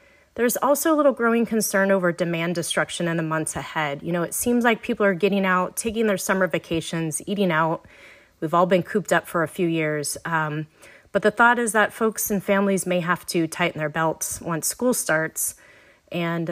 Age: 30-49